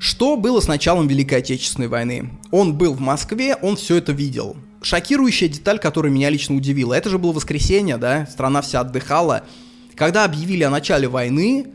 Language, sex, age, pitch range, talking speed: Russian, male, 20-39, 135-175 Hz, 175 wpm